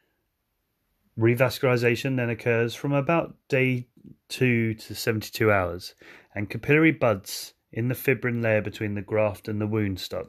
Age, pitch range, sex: 30-49, 100-125 Hz, male